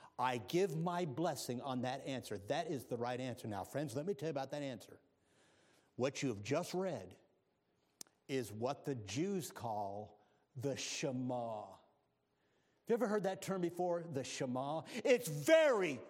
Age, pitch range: 50-69, 120-180 Hz